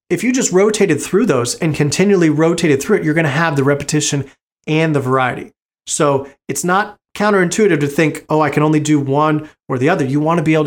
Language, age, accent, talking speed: English, 30-49, American, 225 wpm